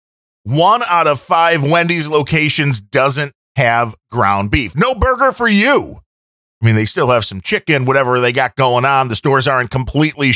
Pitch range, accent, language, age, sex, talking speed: 110-145 Hz, American, English, 40-59, male, 175 wpm